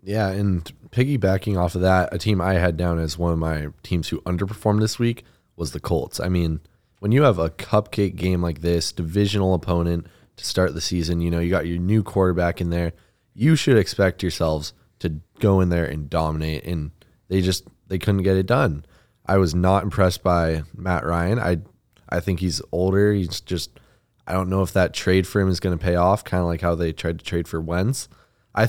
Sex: male